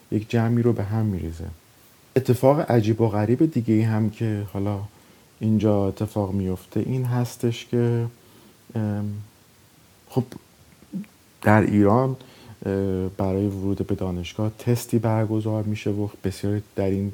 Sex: male